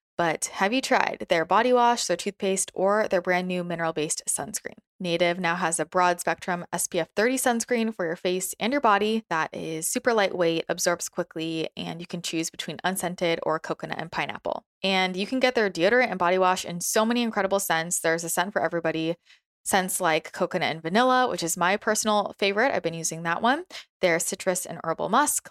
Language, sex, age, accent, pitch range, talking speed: English, female, 20-39, American, 165-210 Hz, 200 wpm